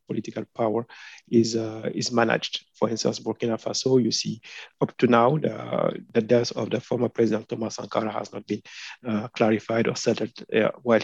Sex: male